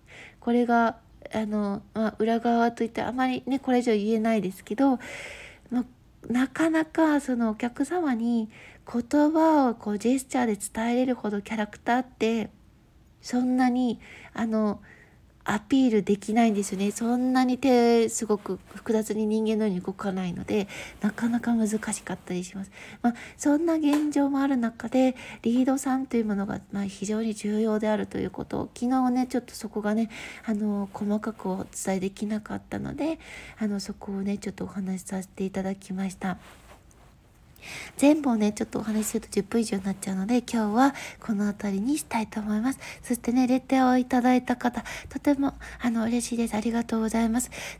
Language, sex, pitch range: Japanese, female, 210-250 Hz